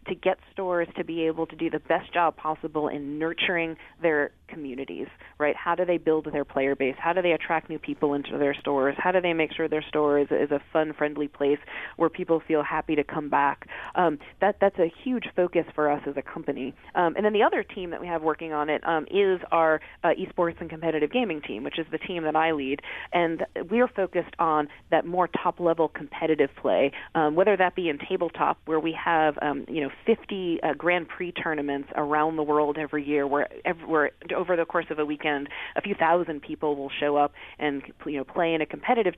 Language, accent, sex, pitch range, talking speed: English, American, female, 150-175 Hz, 225 wpm